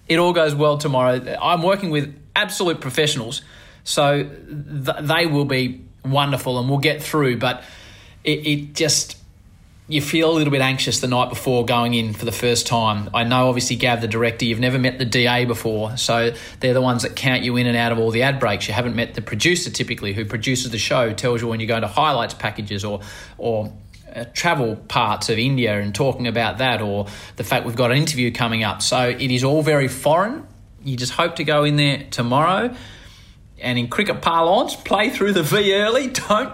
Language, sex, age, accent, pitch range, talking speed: English, male, 30-49, Australian, 115-155 Hz, 210 wpm